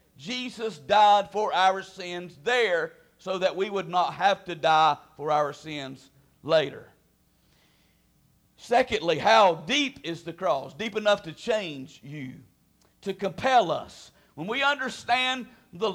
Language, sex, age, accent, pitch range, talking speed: English, male, 50-69, American, 180-240 Hz, 135 wpm